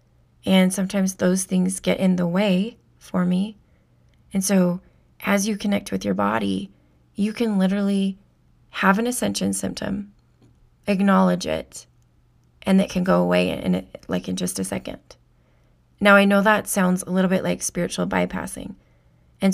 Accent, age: American, 30-49